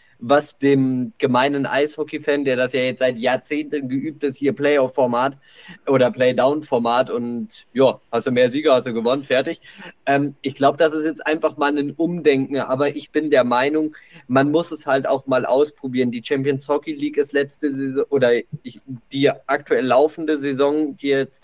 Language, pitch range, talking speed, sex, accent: German, 130-155 Hz, 170 wpm, male, German